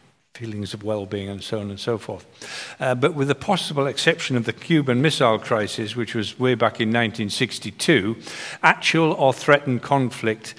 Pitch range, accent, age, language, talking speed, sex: 105-130 Hz, British, 50-69, English, 170 wpm, male